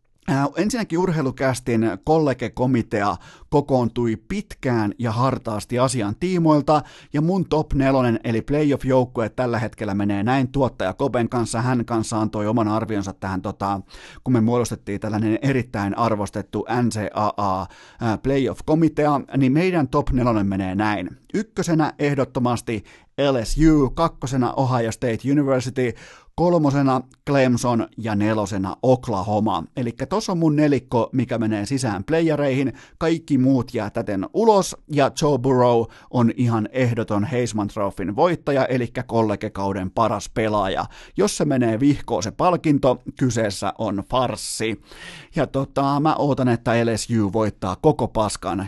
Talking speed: 125 wpm